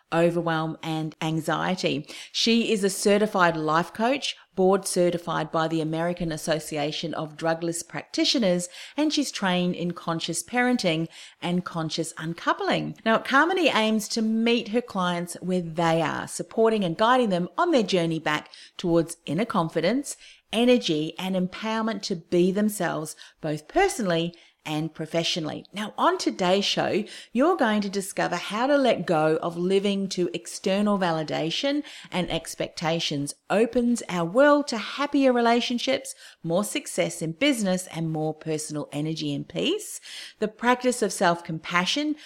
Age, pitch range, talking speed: 40-59, 165-225 Hz, 140 wpm